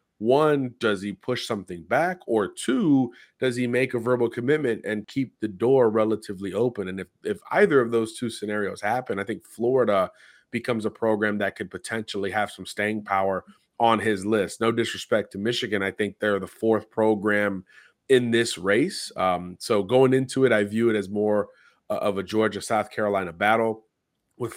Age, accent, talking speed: 30-49, American, 185 wpm